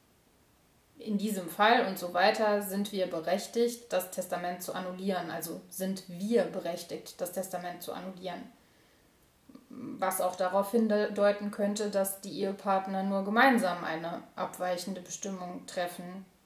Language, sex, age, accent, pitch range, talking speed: German, female, 20-39, German, 185-225 Hz, 130 wpm